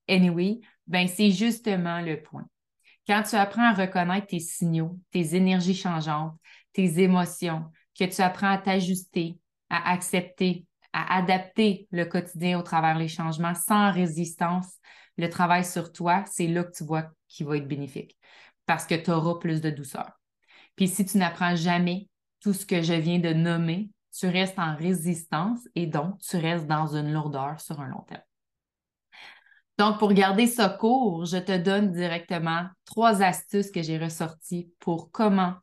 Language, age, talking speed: French, 20-39, 165 wpm